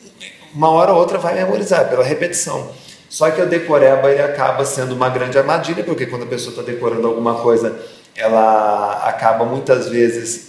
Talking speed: 170 wpm